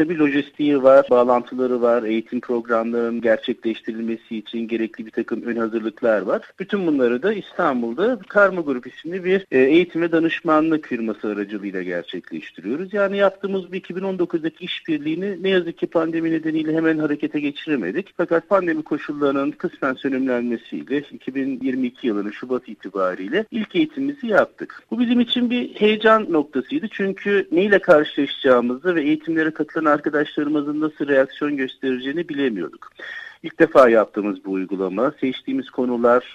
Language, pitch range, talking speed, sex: Turkish, 120-190 Hz, 125 wpm, male